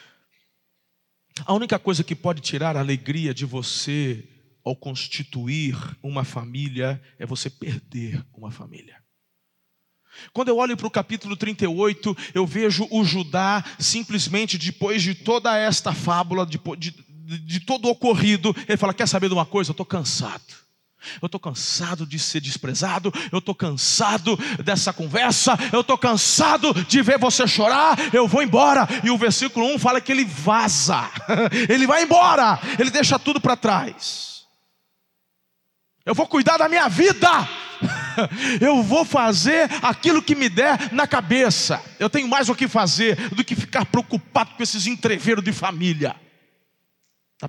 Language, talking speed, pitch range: Portuguese, 155 wpm, 155-240 Hz